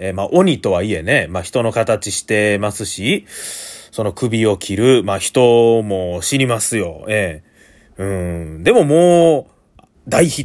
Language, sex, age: Japanese, male, 30-49